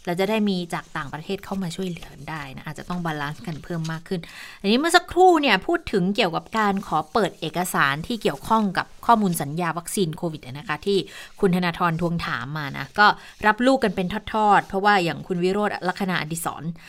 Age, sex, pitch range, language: 20-39, female, 170-215 Hz, Thai